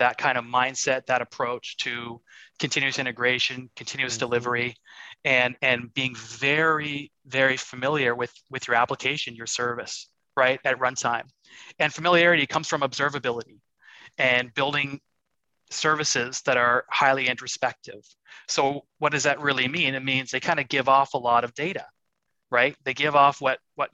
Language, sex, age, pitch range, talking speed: English, male, 30-49, 120-145 Hz, 155 wpm